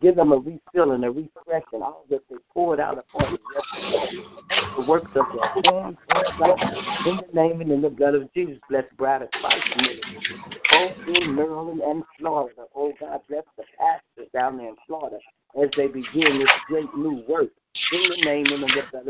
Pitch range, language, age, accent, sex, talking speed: 135-165 Hz, English, 60-79, American, male, 205 wpm